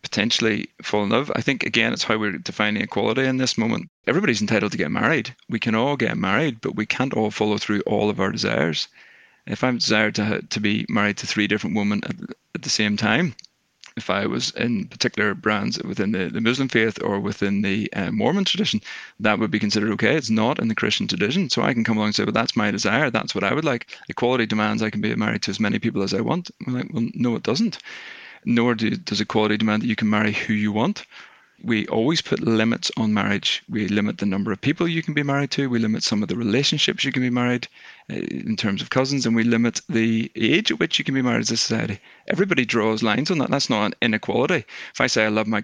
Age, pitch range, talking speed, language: 30-49, 105-130 Hz, 245 wpm, English